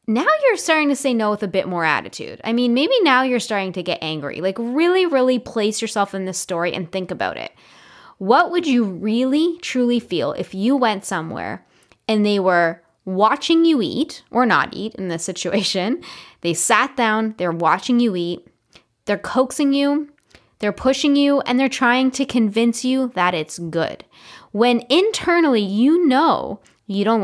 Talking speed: 180 wpm